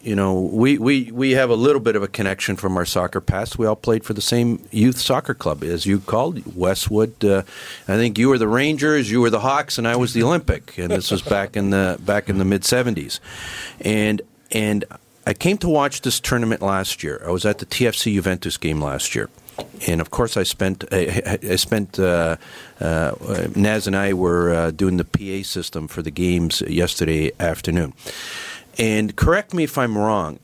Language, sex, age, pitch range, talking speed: English, male, 50-69, 95-120 Hz, 205 wpm